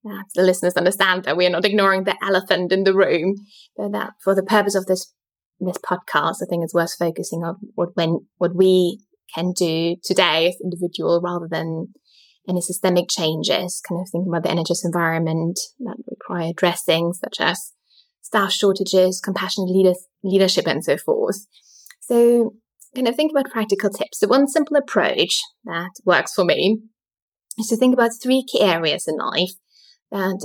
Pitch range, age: 175-225 Hz, 20-39